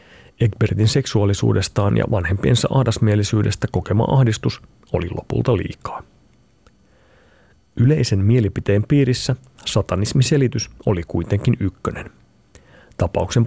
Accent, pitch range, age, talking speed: native, 100-125 Hz, 30-49, 80 wpm